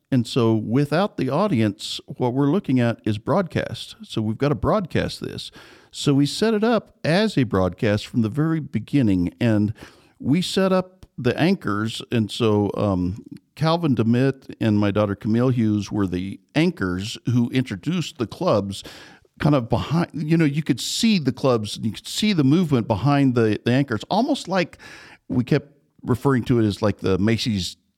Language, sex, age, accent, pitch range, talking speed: English, male, 50-69, American, 105-145 Hz, 180 wpm